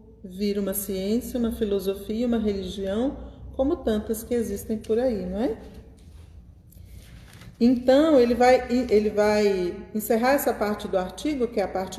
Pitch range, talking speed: 190-250 Hz, 145 wpm